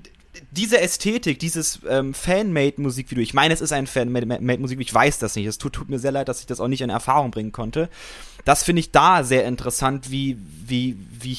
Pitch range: 130-155 Hz